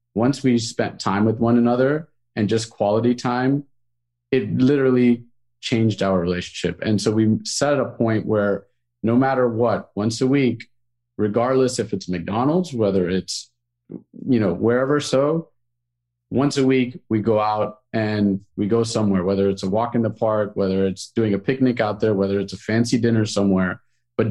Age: 40-59